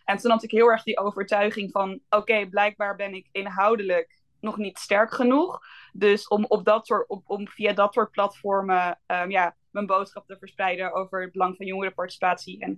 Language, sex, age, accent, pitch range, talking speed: Dutch, female, 20-39, Dutch, 190-230 Hz, 170 wpm